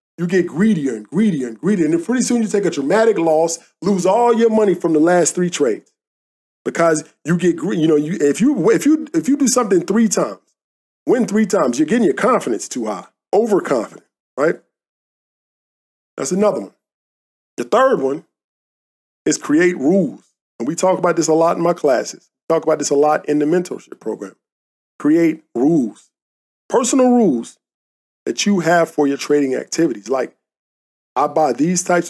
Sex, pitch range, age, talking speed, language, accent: male, 155-215 Hz, 40-59, 180 wpm, English, American